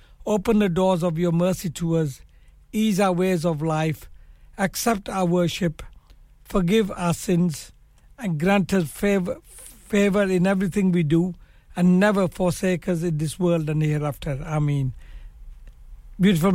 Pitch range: 160-185 Hz